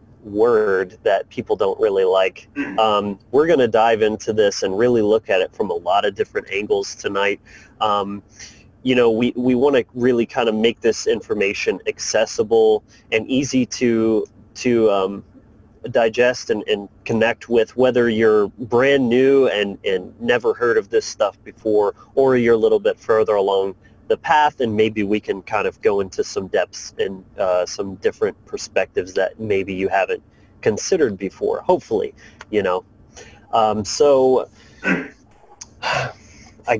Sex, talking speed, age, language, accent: male, 160 wpm, 30-49, English, American